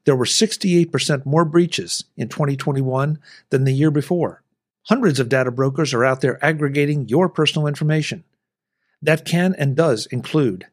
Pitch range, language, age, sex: 135-175 Hz, English, 50-69, male